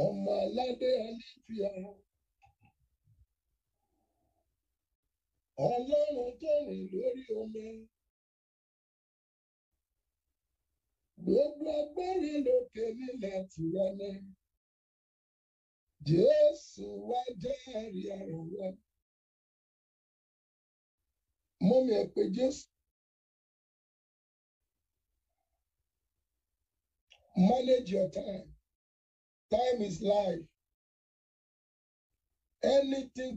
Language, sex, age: English, male, 60-79